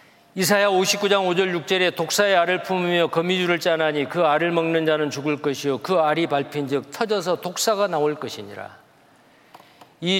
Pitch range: 160-205 Hz